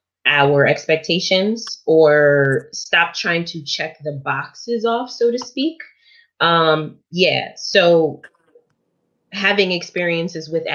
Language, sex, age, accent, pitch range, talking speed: English, female, 20-39, American, 145-190 Hz, 105 wpm